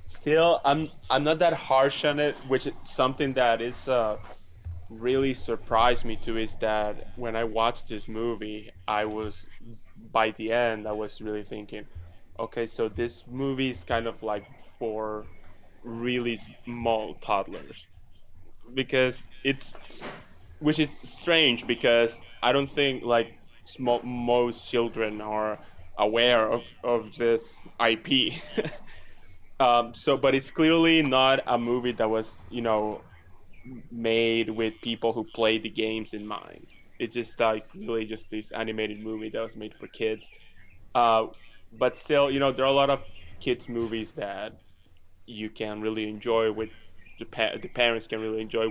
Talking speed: 150 wpm